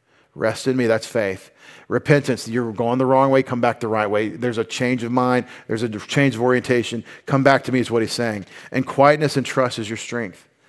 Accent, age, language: American, 40-59, English